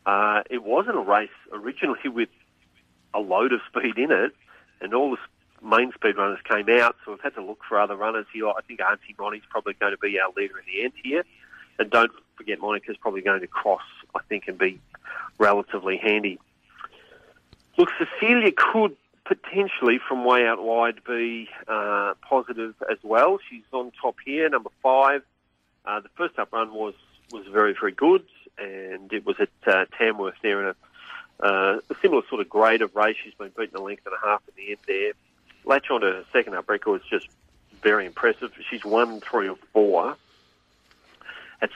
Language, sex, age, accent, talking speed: English, male, 40-59, Australian, 190 wpm